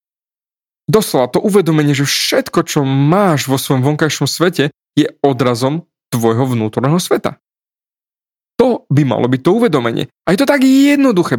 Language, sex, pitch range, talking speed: Slovak, male, 125-170 Hz, 135 wpm